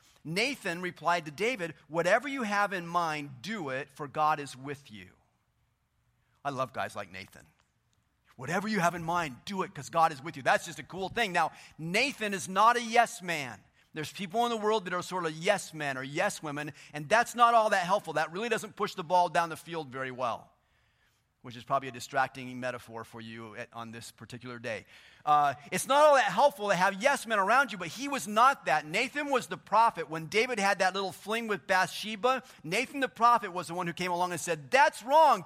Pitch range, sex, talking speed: 130-205 Hz, male, 220 wpm